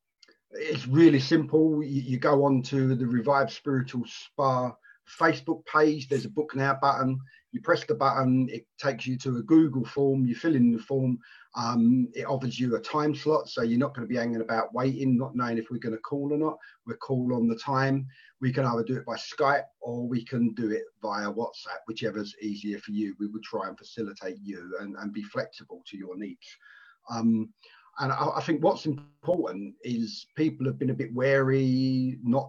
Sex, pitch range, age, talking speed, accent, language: male, 115-145 Hz, 40-59, 205 wpm, British, English